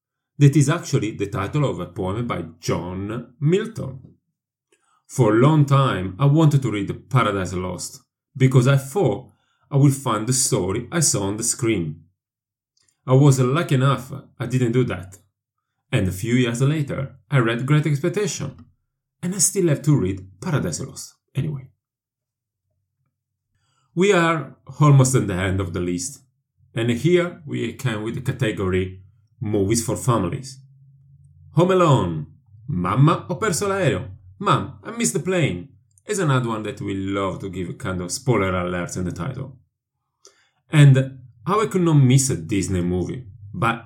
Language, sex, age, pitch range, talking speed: English, male, 30-49, 105-140 Hz, 155 wpm